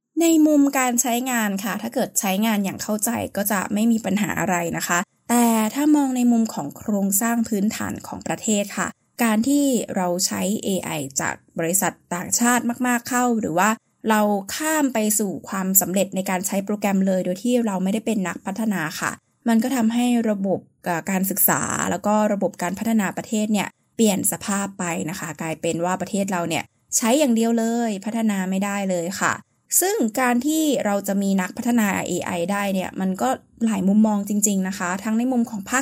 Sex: female